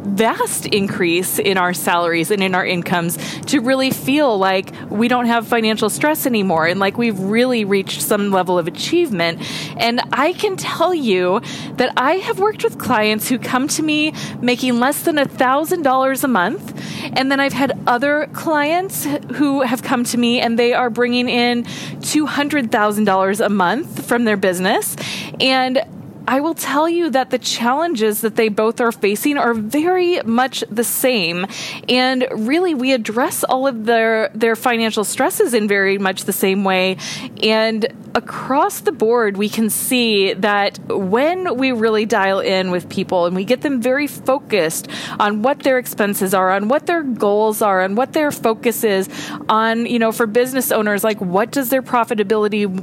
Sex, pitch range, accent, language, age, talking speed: female, 205-265 Hz, American, English, 20-39, 175 wpm